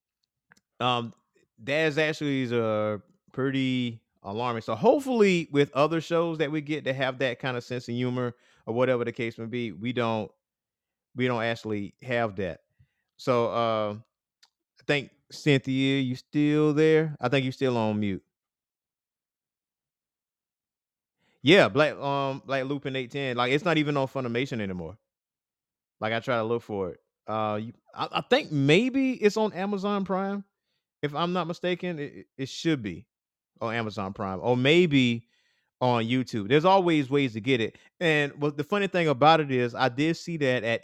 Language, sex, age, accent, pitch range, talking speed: English, male, 30-49, American, 120-150 Hz, 170 wpm